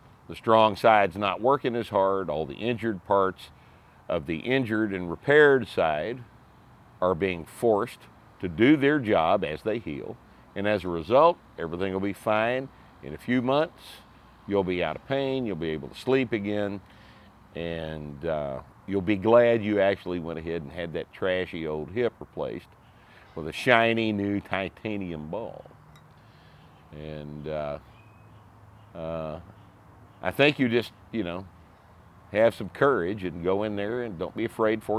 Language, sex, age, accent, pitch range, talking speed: English, male, 50-69, American, 85-110 Hz, 155 wpm